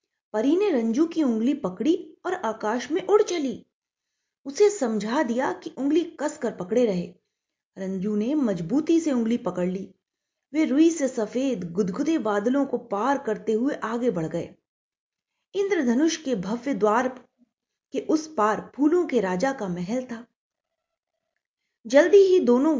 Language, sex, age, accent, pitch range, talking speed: Hindi, female, 30-49, native, 225-315 Hz, 145 wpm